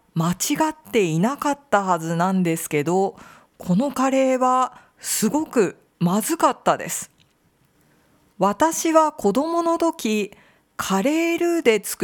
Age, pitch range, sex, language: 50-69, 190-260 Hz, female, Japanese